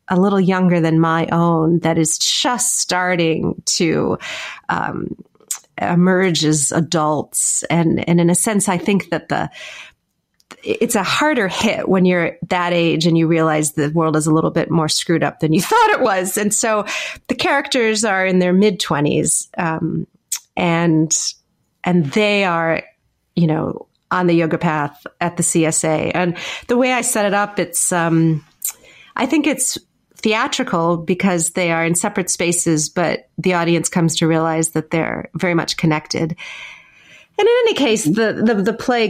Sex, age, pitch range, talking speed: female, 30-49, 165-195 Hz, 170 wpm